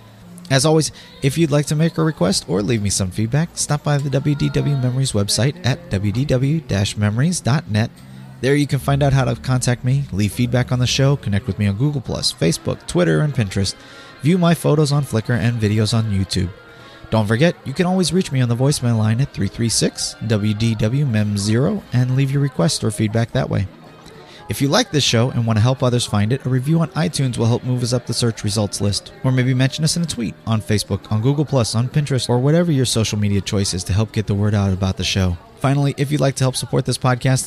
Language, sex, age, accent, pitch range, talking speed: English, male, 30-49, American, 105-140 Hz, 225 wpm